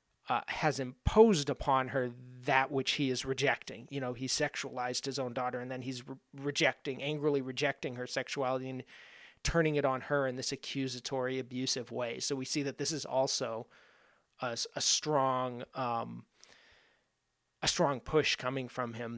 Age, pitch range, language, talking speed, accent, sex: 30-49, 125-140 Hz, English, 165 wpm, American, male